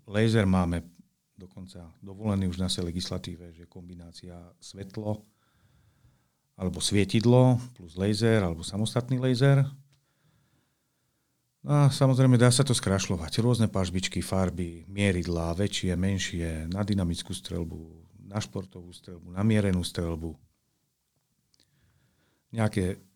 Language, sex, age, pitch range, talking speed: Slovak, male, 40-59, 90-115 Hz, 110 wpm